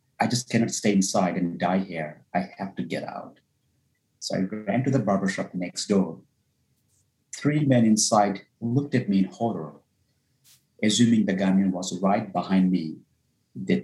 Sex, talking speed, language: male, 160 wpm, English